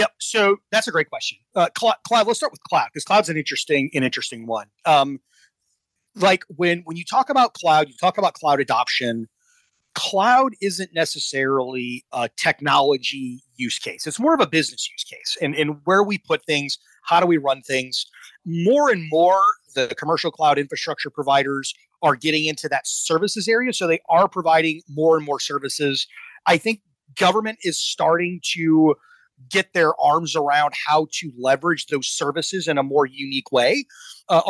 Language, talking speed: English, 175 wpm